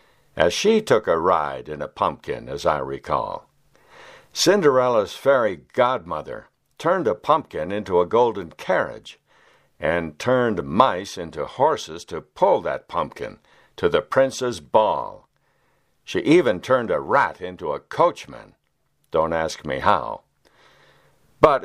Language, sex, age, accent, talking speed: English, male, 60-79, American, 130 wpm